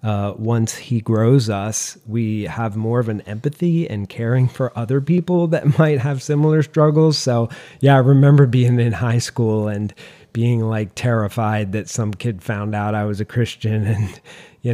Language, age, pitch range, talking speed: English, 40-59, 105-125 Hz, 180 wpm